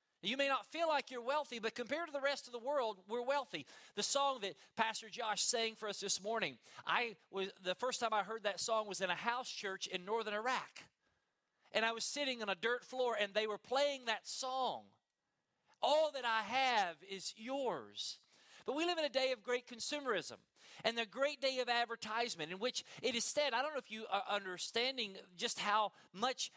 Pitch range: 205-255 Hz